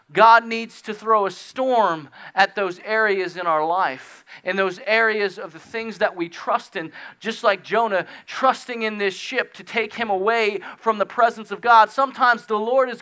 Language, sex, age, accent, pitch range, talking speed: English, male, 30-49, American, 125-200 Hz, 195 wpm